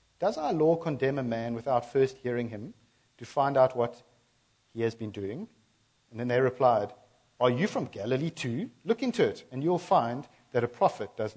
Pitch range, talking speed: 120-175 Hz, 195 wpm